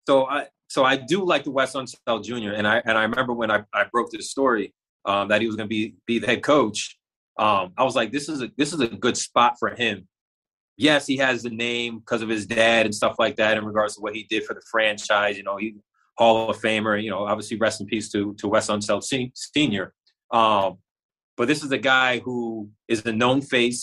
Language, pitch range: English, 110-130 Hz